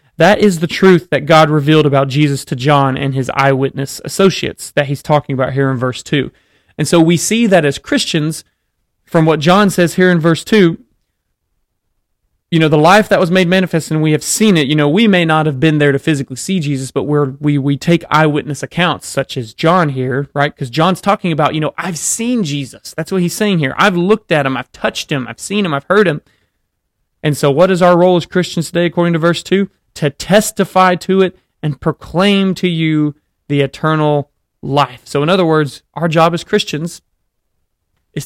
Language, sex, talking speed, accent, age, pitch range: English, male, 210 wpm, American, 30-49, 140-180 Hz